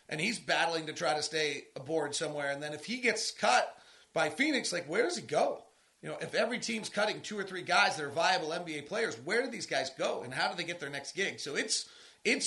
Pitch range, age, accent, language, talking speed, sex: 155-185 Hz, 30-49, American, English, 255 wpm, male